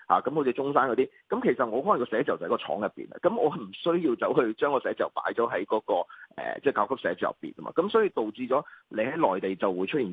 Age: 30-49